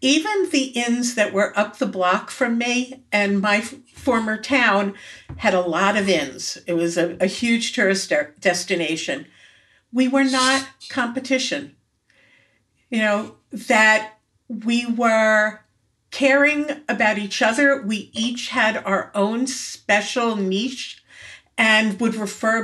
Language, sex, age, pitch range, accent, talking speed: English, female, 50-69, 200-245 Hz, American, 135 wpm